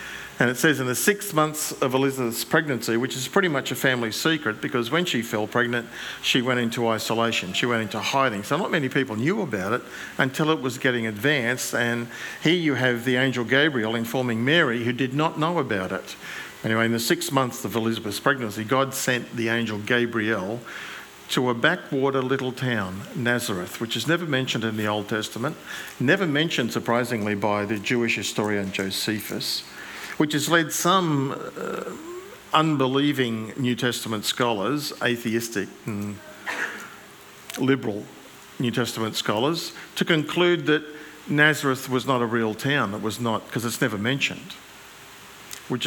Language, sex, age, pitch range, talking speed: English, male, 50-69, 110-135 Hz, 160 wpm